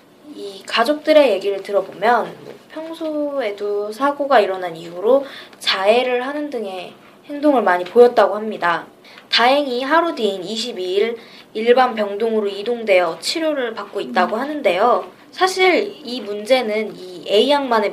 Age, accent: 20-39, native